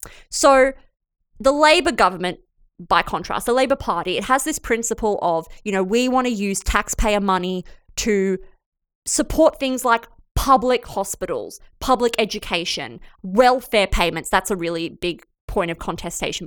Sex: female